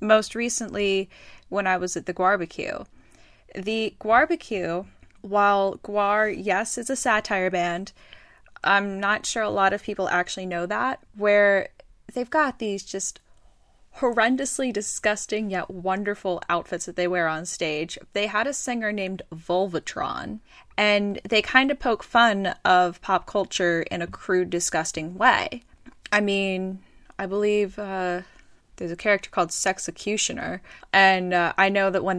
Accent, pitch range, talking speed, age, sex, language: American, 175-210 Hz, 145 wpm, 10-29, female, English